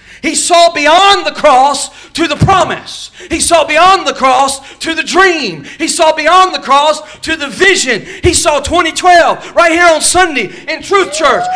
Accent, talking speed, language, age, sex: American, 175 wpm, English, 40-59, male